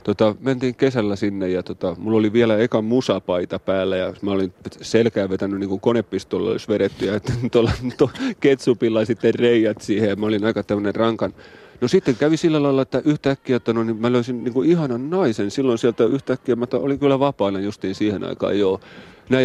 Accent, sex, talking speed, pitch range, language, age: native, male, 195 wpm, 110-140 Hz, Finnish, 30-49